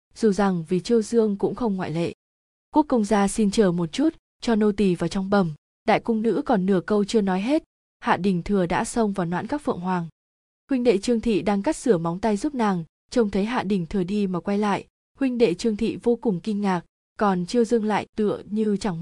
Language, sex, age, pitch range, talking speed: Vietnamese, female, 20-39, 185-230 Hz, 240 wpm